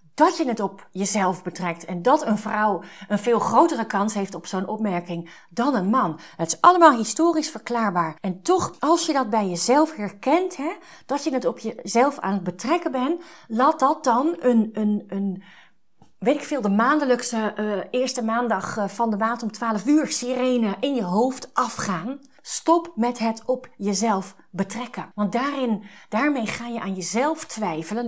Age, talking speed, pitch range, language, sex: 30-49, 180 wpm, 200-265 Hz, Dutch, female